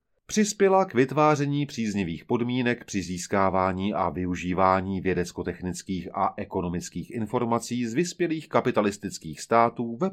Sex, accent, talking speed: male, native, 105 wpm